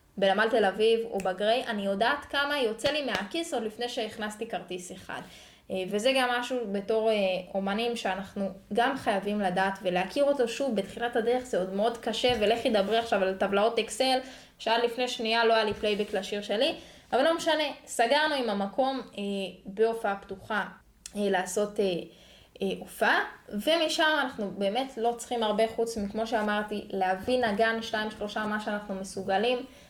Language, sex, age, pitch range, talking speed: Hebrew, female, 10-29, 200-245 Hz, 160 wpm